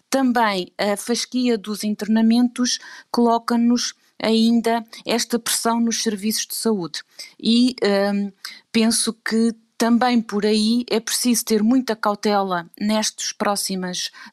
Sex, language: female, Portuguese